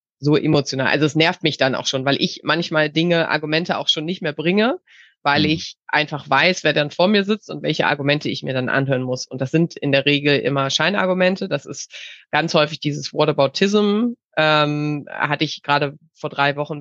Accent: German